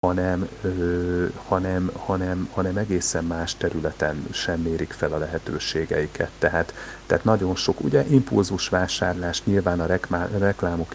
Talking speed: 120 wpm